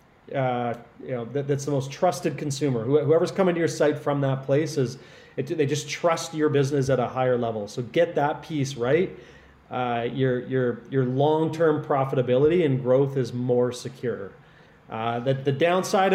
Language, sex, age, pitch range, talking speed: English, male, 30-49, 130-160 Hz, 180 wpm